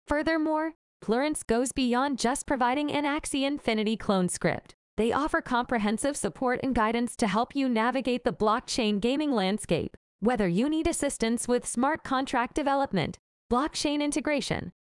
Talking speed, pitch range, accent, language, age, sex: 140 wpm, 225-285 Hz, American, English, 20-39, female